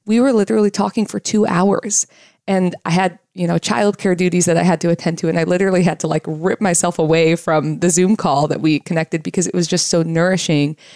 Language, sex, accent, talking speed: English, female, American, 230 wpm